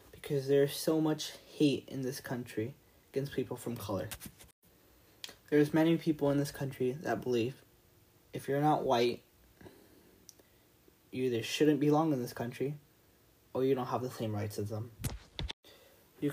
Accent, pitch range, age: American, 115-145 Hz, 20-39